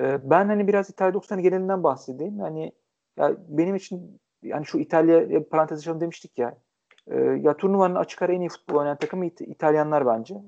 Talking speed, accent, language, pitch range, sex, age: 180 wpm, native, Turkish, 125-165 Hz, male, 40-59